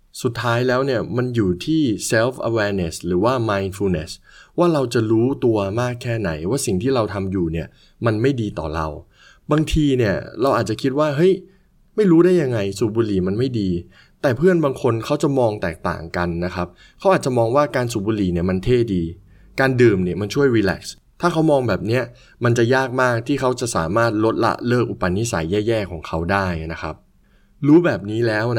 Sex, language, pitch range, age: male, Thai, 95-130 Hz, 20-39